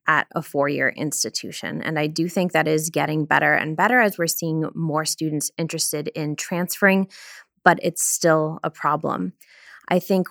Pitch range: 160-195 Hz